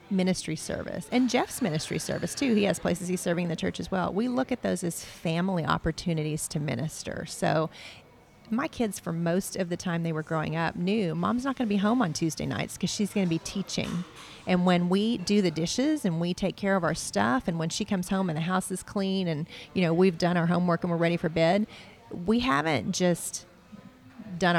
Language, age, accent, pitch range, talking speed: English, 40-59, American, 160-195 Hz, 225 wpm